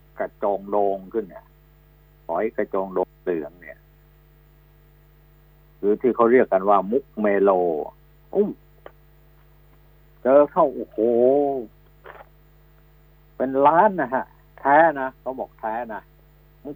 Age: 60-79